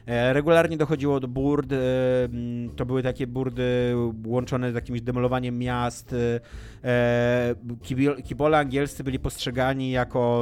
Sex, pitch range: male, 110-130 Hz